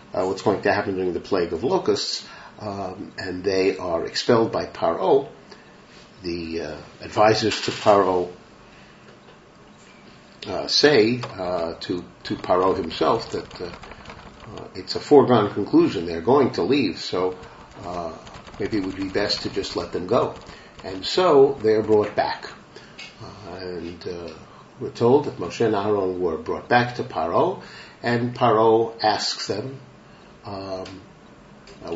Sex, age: male, 50-69